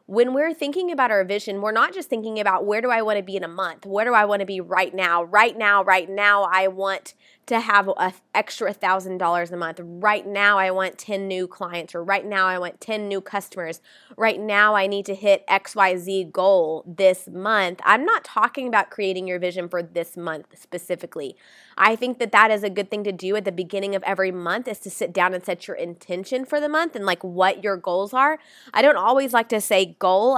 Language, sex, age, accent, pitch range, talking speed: English, female, 20-39, American, 185-230 Hz, 230 wpm